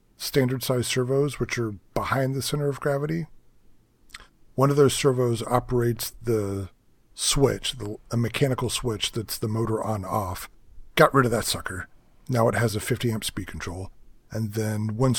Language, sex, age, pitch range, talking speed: English, male, 40-59, 105-130 Hz, 160 wpm